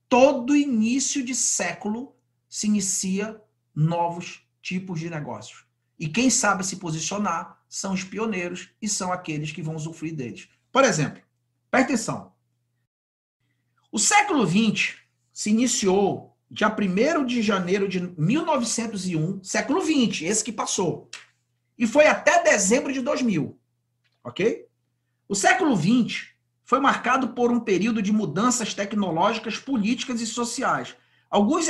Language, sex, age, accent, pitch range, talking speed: Portuguese, male, 40-59, Brazilian, 165-245 Hz, 125 wpm